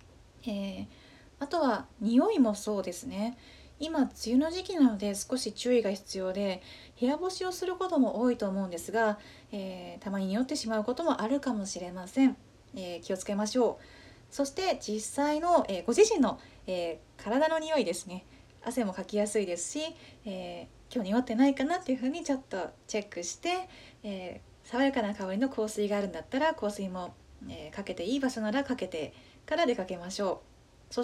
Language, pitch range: Japanese, 195-285 Hz